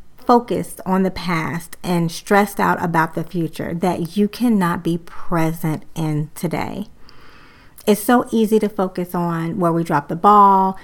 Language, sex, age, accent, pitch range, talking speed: English, female, 30-49, American, 175-205 Hz, 155 wpm